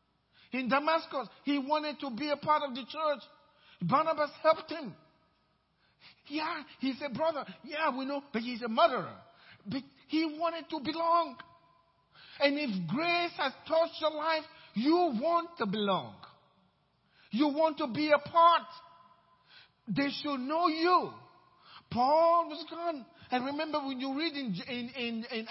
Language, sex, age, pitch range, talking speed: English, male, 50-69, 200-300 Hz, 150 wpm